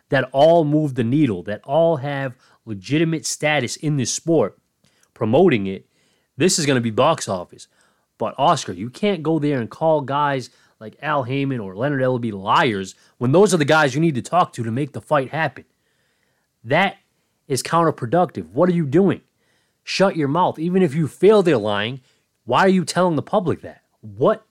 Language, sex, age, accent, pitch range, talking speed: English, male, 30-49, American, 120-160 Hz, 190 wpm